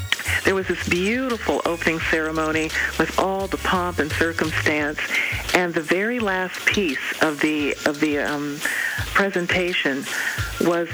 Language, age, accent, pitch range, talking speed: English, 50-69, American, 150-185 Hz, 130 wpm